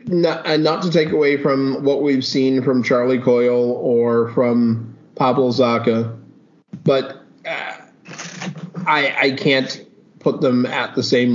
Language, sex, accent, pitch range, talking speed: English, male, American, 120-145 Hz, 150 wpm